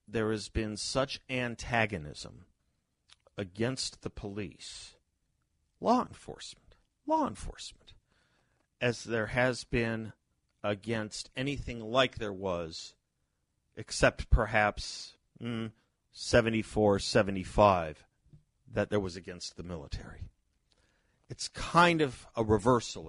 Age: 50-69